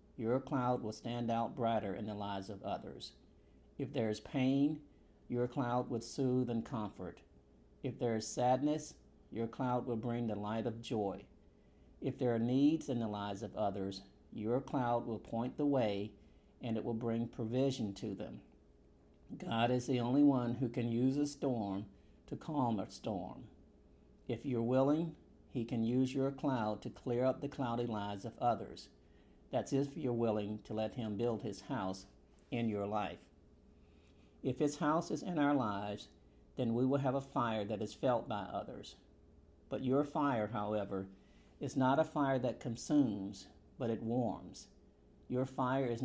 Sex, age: male, 50-69